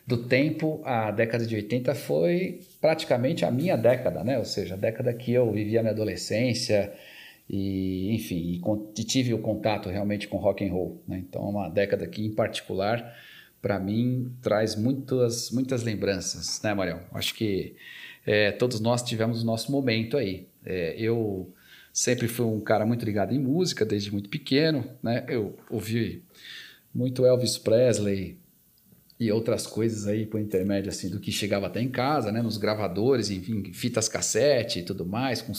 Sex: male